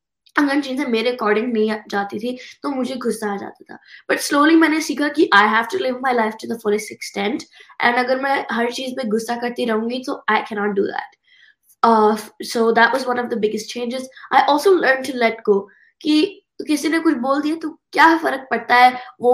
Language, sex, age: Hindi, female, 20-39